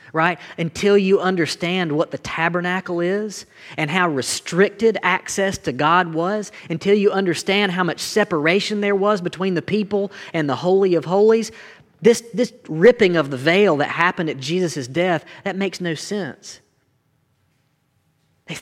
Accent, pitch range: American, 125-180 Hz